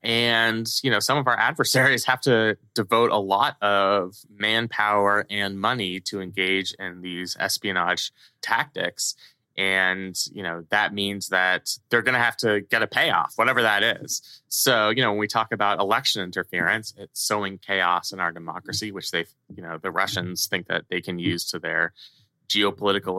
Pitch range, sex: 95-115 Hz, male